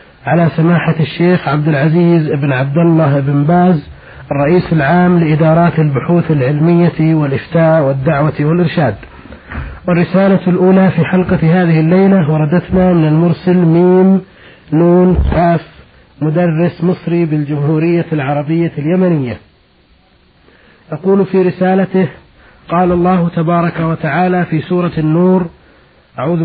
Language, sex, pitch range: Arabic, male, 155-180 Hz